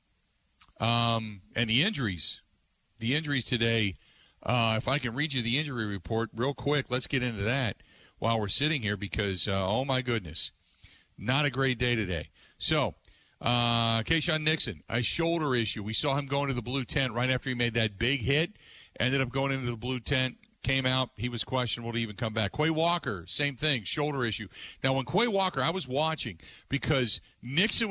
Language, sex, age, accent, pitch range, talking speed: English, male, 40-59, American, 115-145 Hz, 190 wpm